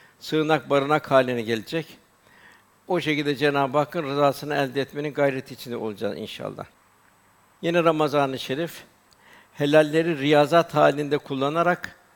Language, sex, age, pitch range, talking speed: Turkish, male, 60-79, 140-160 Hz, 110 wpm